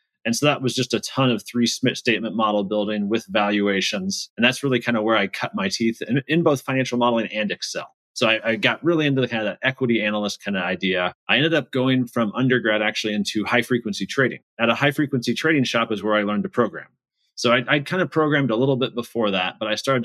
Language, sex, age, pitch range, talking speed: English, male, 30-49, 105-125 Hz, 245 wpm